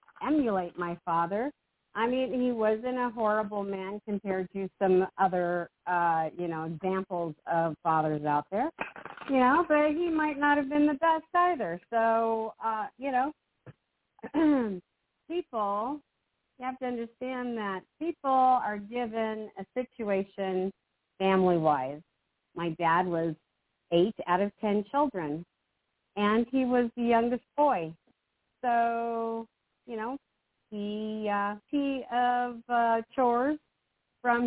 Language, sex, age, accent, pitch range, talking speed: English, female, 50-69, American, 195-270 Hz, 125 wpm